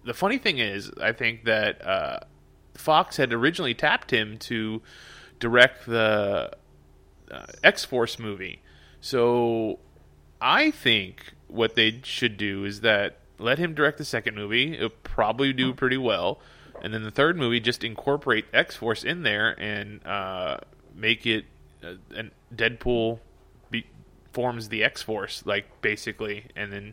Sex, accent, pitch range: male, American, 100-120 Hz